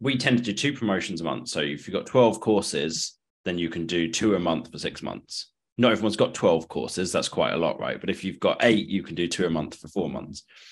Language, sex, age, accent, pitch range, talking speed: English, male, 20-39, British, 85-115 Hz, 270 wpm